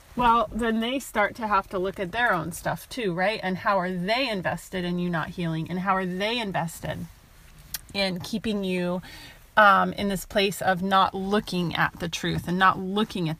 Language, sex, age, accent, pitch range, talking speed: English, female, 30-49, American, 180-220 Hz, 200 wpm